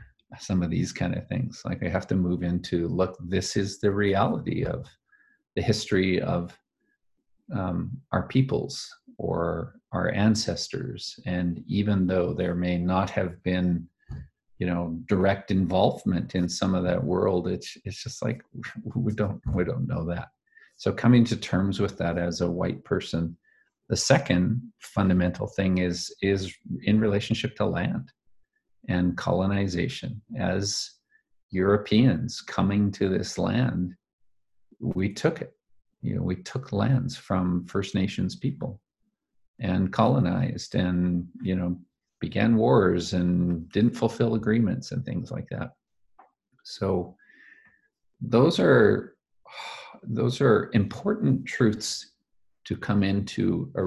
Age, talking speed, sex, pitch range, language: 40-59, 135 wpm, male, 90-110 Hz, English